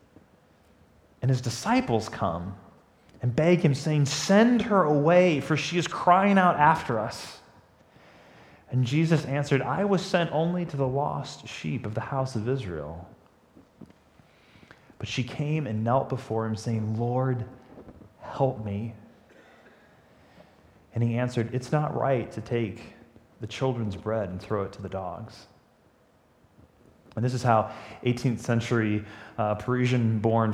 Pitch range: 110-155 Hz